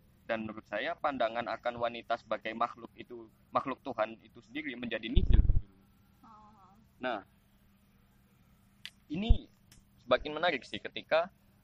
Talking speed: 110 wpm